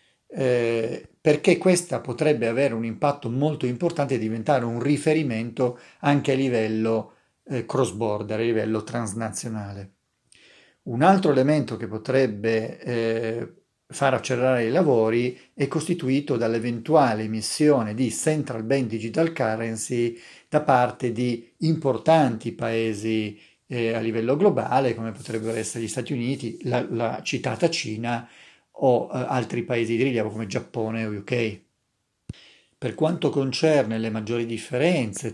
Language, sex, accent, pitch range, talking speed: Italian, male, native, 115-140 Hz, 125 wpm